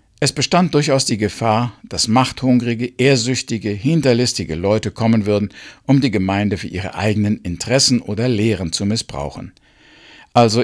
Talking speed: 135 wpm